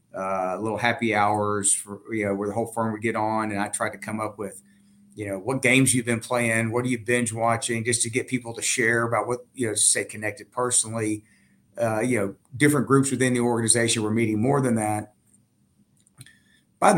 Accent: American